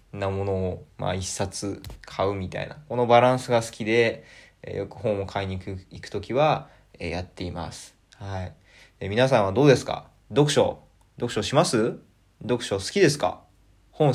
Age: 20-39